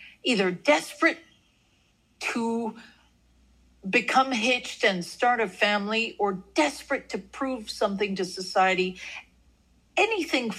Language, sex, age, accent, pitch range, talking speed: English, female, 50-69, American, 185-270 Hz, 95 wpm